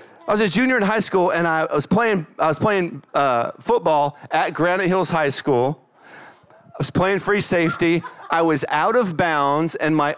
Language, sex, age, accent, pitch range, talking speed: English, male, 40-59, American, 160-240 Hz, 195 wpm